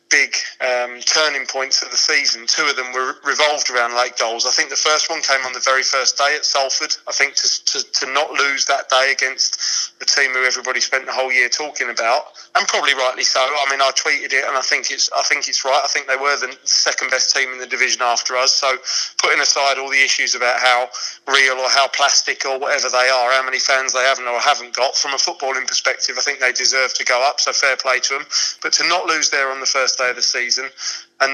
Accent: British